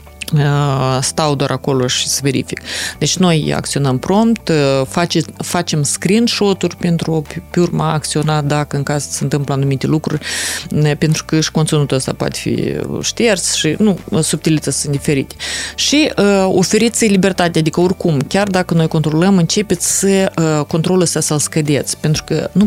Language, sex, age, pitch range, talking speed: Romanian, female, 30-49, 150-180 Hz, 145 wpm